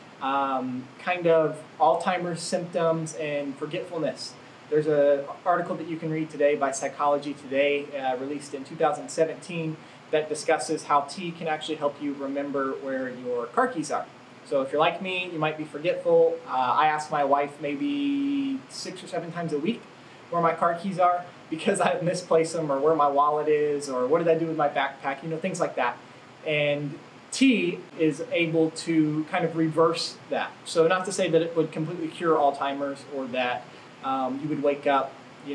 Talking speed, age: 185 wpm, 20-39